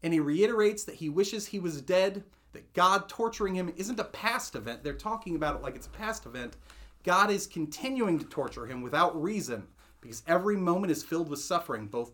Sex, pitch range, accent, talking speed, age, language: male, 140-180 Hz, American, 210 wpm, 30-49, English